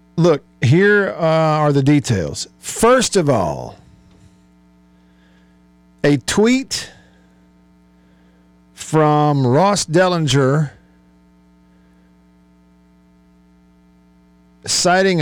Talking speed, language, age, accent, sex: 60 wpm, English, 50-69, American, male